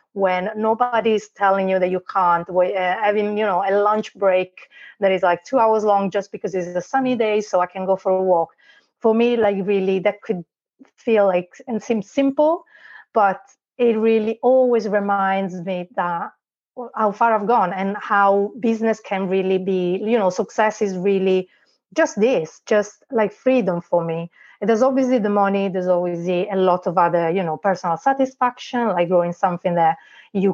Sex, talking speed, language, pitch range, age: female, 180 wpm, English, 180-220 Hz, 30-49